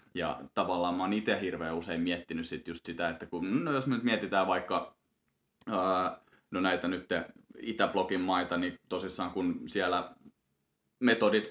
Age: 20-39